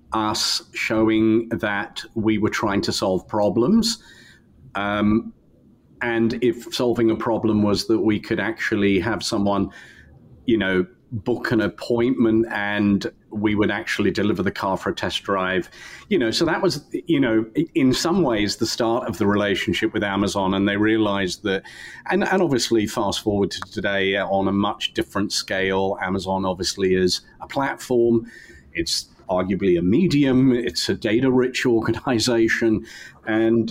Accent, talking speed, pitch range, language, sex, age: British, 155 wpm, 100-115 Hz, English, male, 40-59